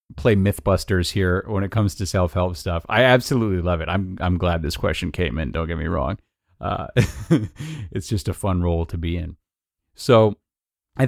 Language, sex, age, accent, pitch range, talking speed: English, male, 30-49, American, 90-110 Hz, 190 wpm